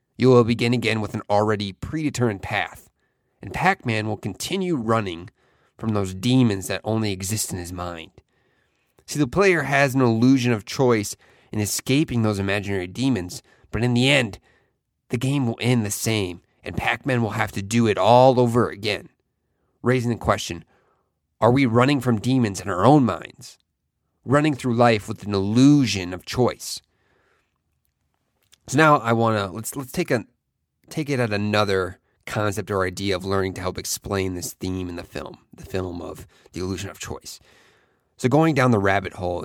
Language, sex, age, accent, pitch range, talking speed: English, male, 30-49, American, 95-125 Hz, 175 wpm